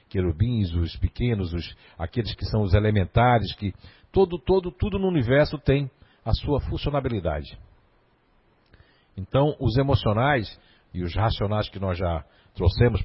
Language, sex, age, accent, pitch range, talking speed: Portuguese, male, 60-79, Brazilian, 105-150 Hz, 130 wpm